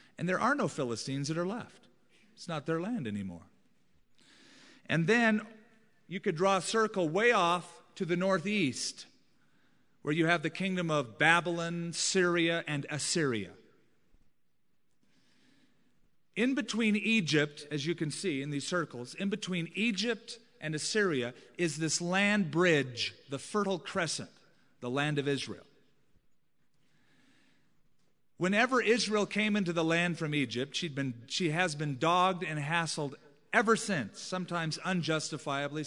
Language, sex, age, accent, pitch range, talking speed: English, male, 40-59, American, 150-205 Hz, 135 wpm